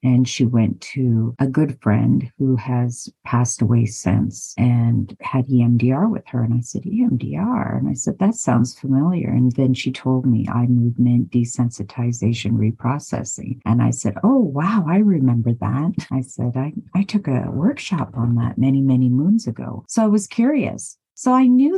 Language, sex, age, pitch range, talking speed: English, female, 50-69, 120-145 Hz, 175 wpm